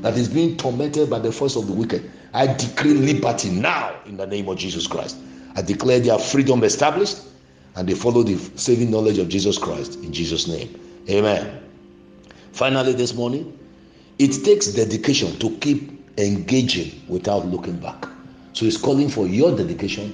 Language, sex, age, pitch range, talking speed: English, male, 50-69, 100-135 Hz, 165 wpm